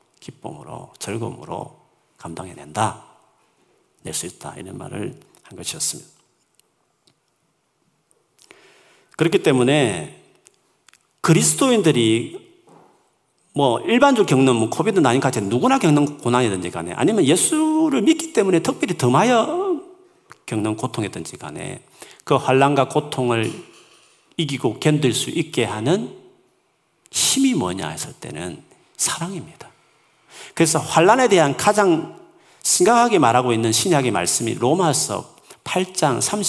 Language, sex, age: Korean, male, 40-59